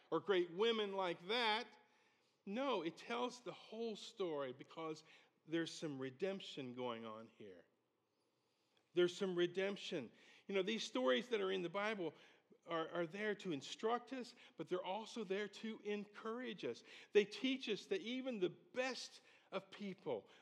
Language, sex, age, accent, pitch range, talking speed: English, male, 50-69, American, 160-225 Hz, 155 wpm